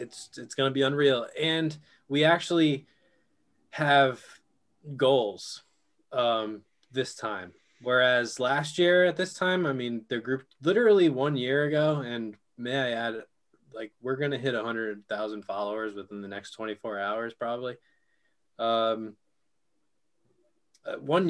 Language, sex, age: English, male, 20-39